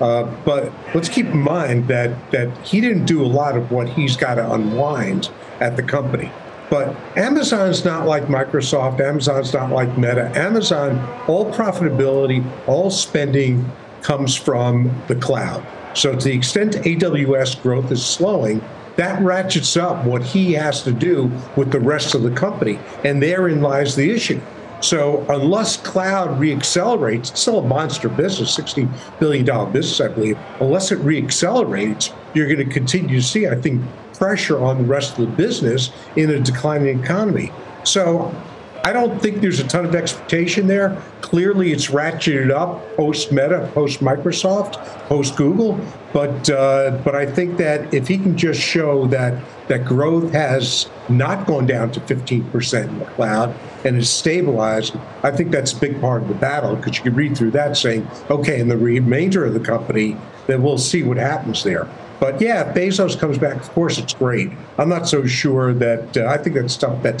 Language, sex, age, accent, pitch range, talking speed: English, male, 50-69, American, 130-170 Hz, 175 wpm